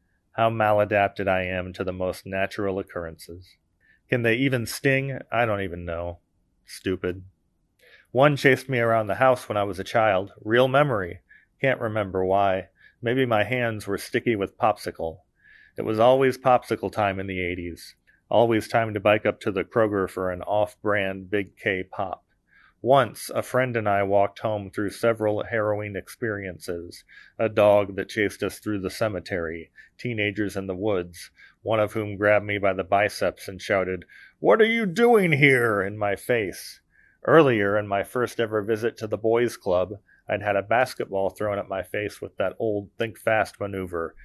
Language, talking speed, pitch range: English, 170 wpm, 95-115 Hz